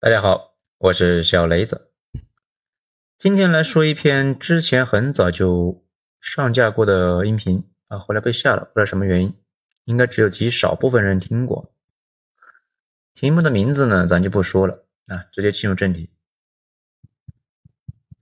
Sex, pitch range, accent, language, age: male, 95-155 Hz, native, Chinese, 30-49